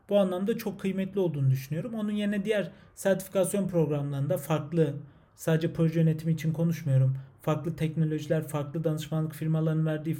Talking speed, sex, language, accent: 135 wpm, male, Turkish, native